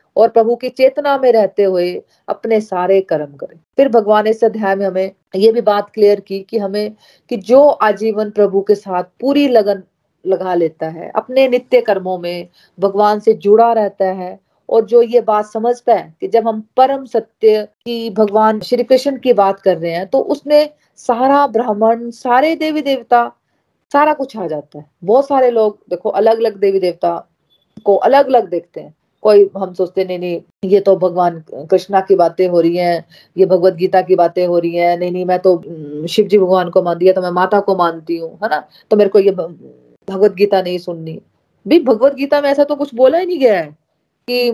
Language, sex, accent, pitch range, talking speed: Hindi, female, native, 185-245 Hz, 170 wpm